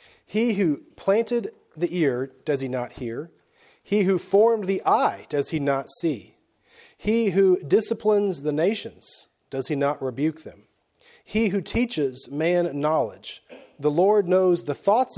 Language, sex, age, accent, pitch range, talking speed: English, male, 40-59, American, 140-200 Hz, 150 wpm